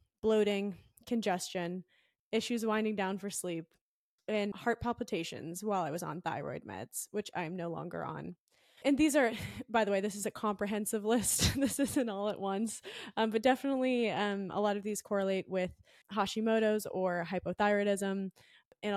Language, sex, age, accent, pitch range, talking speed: English, female, 20-39, American, 180-210 Hz, 165 wpm